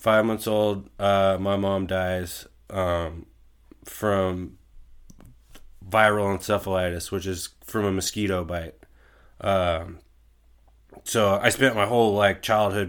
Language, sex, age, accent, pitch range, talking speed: English, male, 20-39, American, 95-105 Hz, 115 wpm